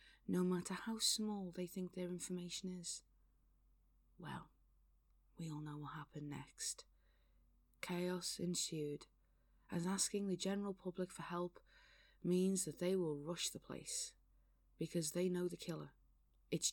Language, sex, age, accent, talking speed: English, female, 30-49, British, 135 wpm